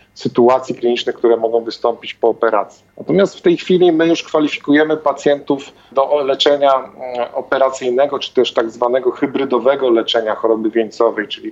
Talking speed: 140 wpm